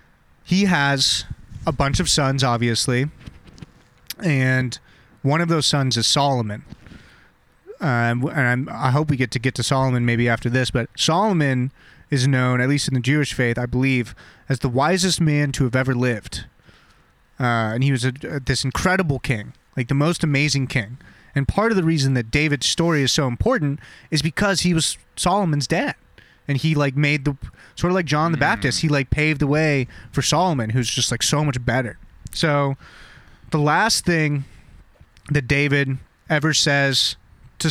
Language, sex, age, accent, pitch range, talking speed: English, male, 30-49, American, 125-150 Hz, 175 wpm